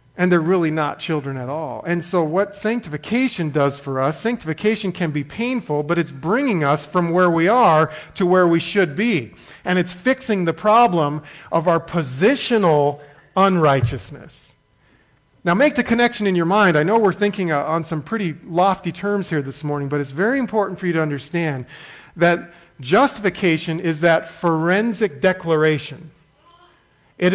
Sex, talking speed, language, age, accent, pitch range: male, 160 wpm, English, 40-59, American, 145-195 Hz